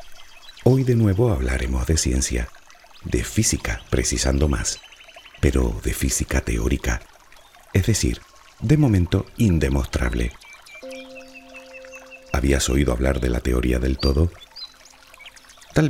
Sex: male